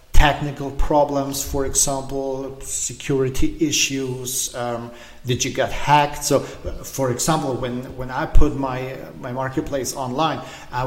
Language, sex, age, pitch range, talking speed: English, male, 40-59, 125-150 Hz, 135 wpm